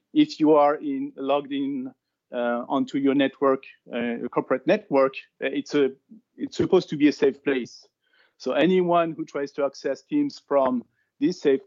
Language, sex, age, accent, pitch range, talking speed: English, male, 50-69, French, 130-170 Hz, 165 wpm